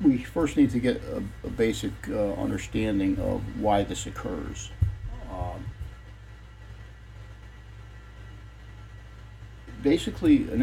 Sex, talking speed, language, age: male, 95 wpm, English, 60-79